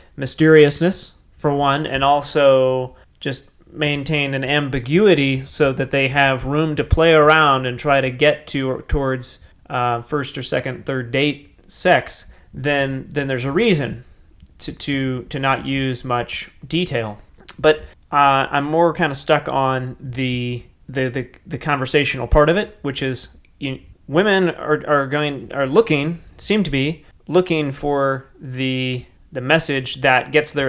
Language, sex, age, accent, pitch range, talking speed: English, male, 30-49, American, 130-150 Hz, 155 wpm